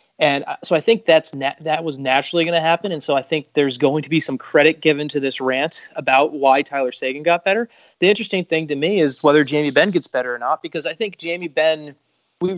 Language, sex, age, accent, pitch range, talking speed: English, male, 30-49, American, 130-155 Hz, 245 wpm